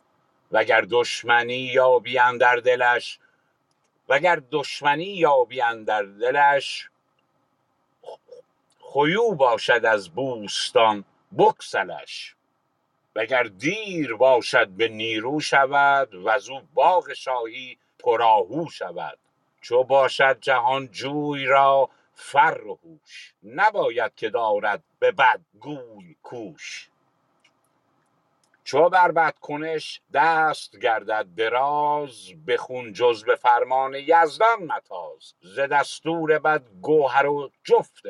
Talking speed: 85 wpm